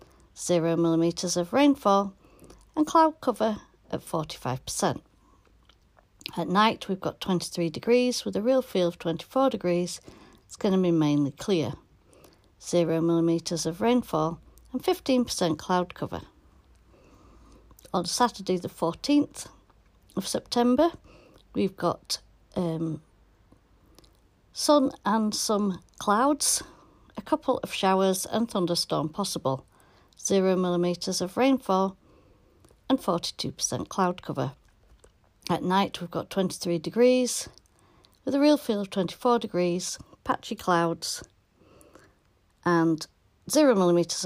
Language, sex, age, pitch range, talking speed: English, female, 60-79, 170-240 Hz, 110 wpm